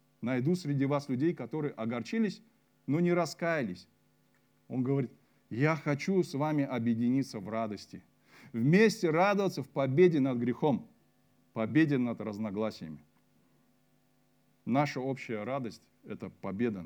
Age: 40-59